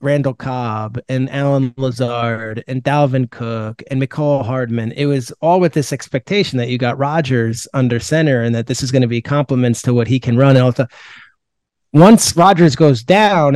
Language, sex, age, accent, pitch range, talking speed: English, male, 30-49, American, 145-195 Hz, 175 wpm